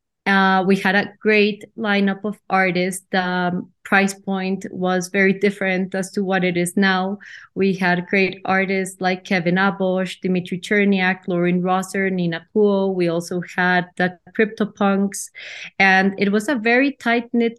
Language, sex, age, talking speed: English, female, 30-49, 150 wpm